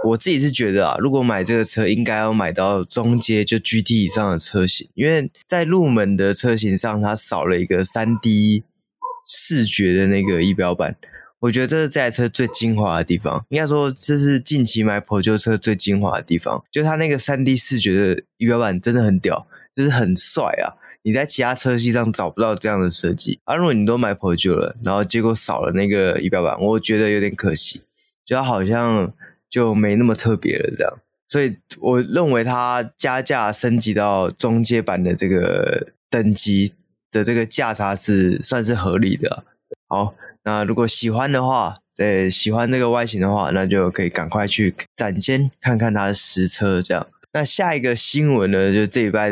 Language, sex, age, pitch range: Chinese, male, 20-39, 100-120 Hz